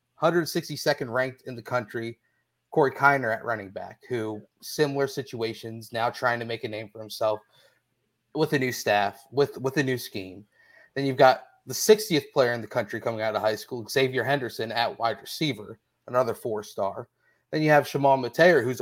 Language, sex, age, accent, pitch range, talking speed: English, male, 30-49, American, 115-140 Hz, 180 wpm